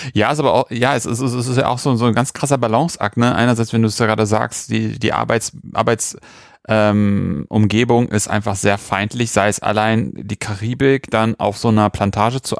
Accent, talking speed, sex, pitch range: German, 225 wpm, male, 105-125 Hz